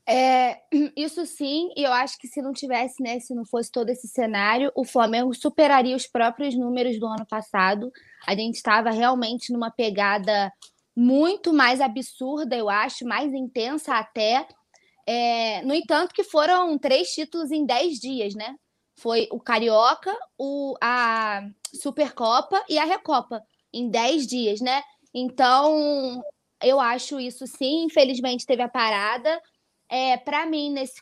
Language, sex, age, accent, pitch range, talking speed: Portuguese, female, 20-39, Brazilian, 235-300 Hz, 145 wpm